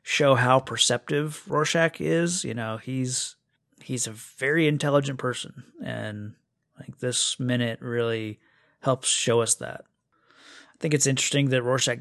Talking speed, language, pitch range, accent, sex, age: 140 wpm, English, 115-140 Hz, American, male, 30-49